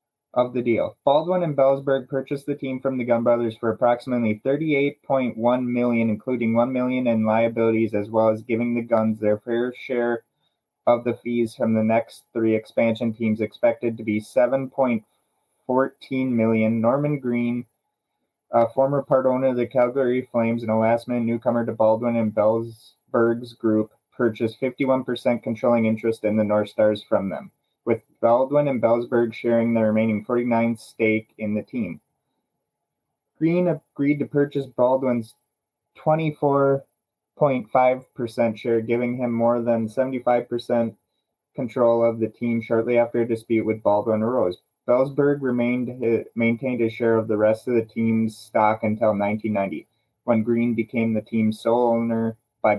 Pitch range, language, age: 110-125 Hz, English, 20-39